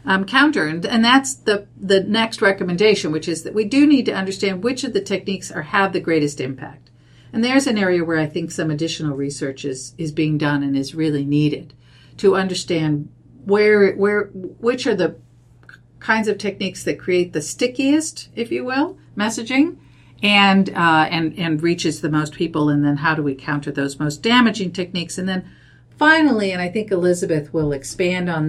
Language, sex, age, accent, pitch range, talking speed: English, female, 50-69, American, 145-190 Hz, 190 wpm